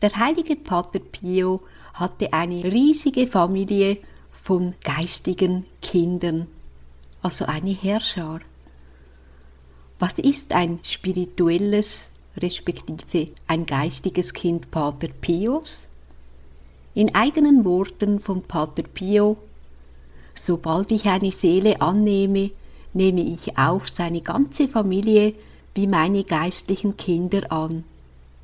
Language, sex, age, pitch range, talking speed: German, female, 60-79, 160-200 Hz, 95 wpm